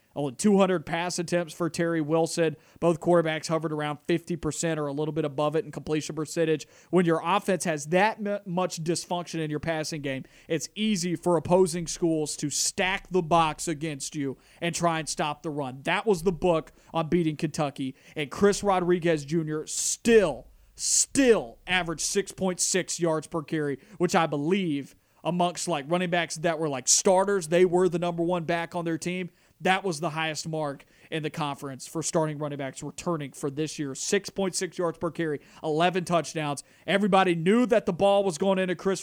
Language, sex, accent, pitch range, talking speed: English, male, American, 150-180 Hz, 180 wpm